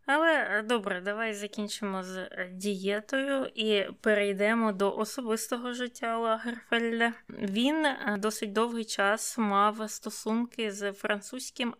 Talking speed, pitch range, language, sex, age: 100 wpm, 195-230 Hz, Ukrainian, female, 20-39